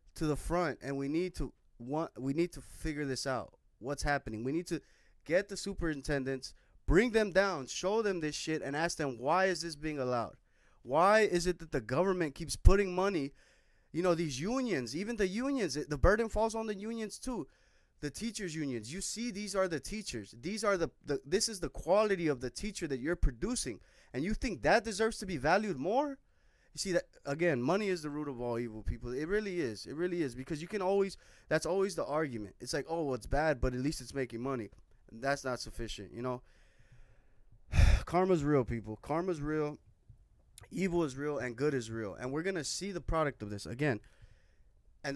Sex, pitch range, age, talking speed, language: male, 125-185 Hz, 20-39, 210 wpm, English